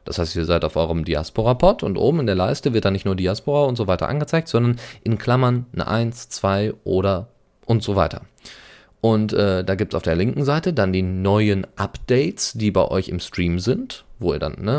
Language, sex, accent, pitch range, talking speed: German, male, German, 90-120 Hz, 215 wpm